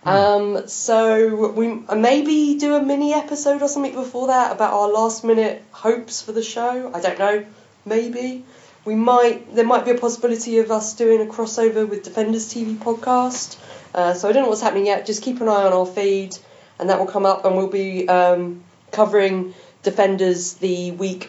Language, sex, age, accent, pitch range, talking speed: English, female, 30-49, British, 185-235 Hz, 190 wpm